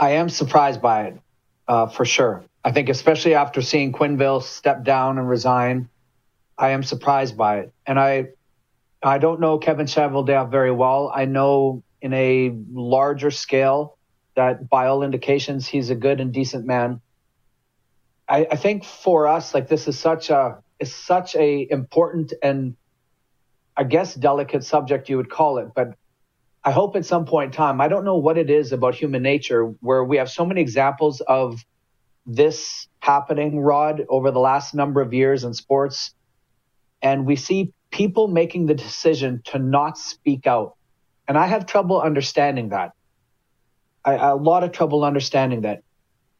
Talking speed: 165 wpm